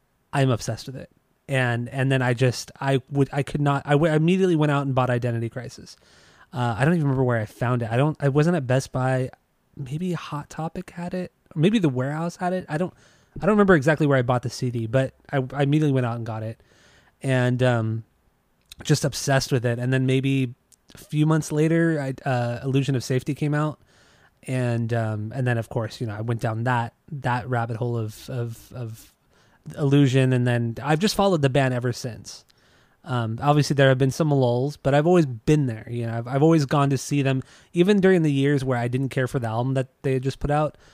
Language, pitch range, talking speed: English, 120-145 Hz, 225 wpm